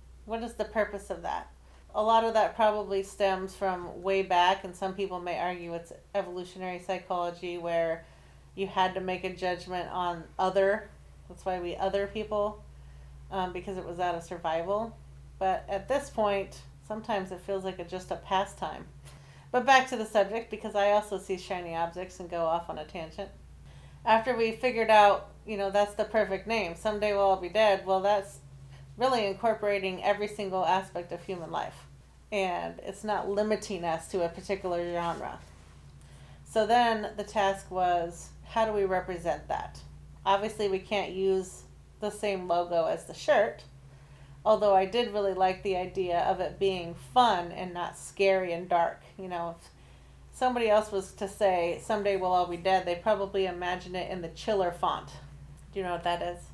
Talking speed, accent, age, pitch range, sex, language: 180 wpm, American, 30-49, 175-205 Hz, female, English